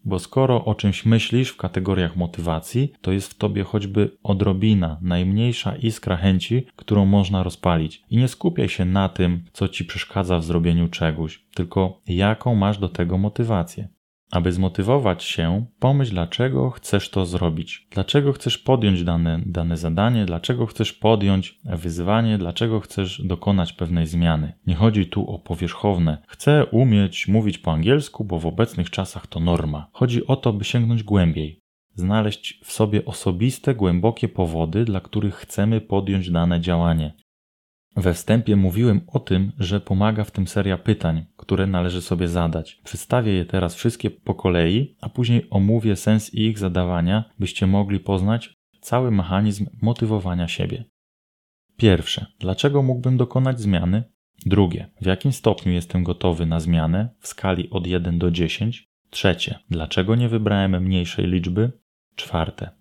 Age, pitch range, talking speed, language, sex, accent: 20-39, 90-110 Hz, 150 wpm, Polish, male, native